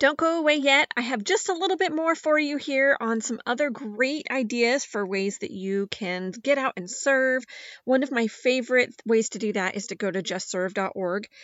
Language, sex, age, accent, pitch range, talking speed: English, female, 30-49, American, 195-250 Hz, 215 wpm